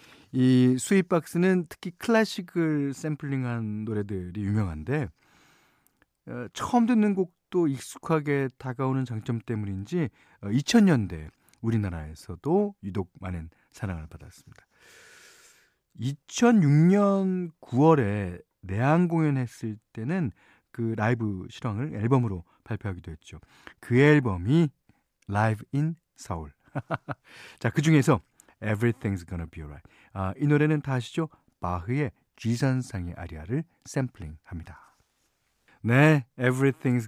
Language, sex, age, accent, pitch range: Korean, male, 40-59, native, 100-155 Hz